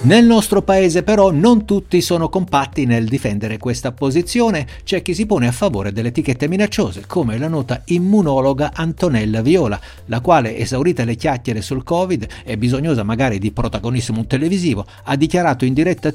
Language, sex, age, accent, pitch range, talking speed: Italian, male, 60-79, native, 115-170 Hz, 165 wpm